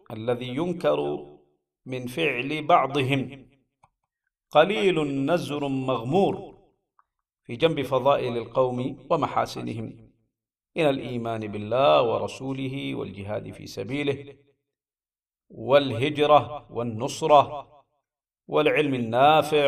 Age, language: 50-69, Arabic